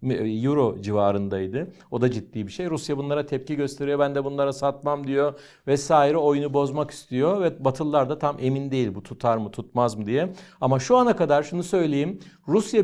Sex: male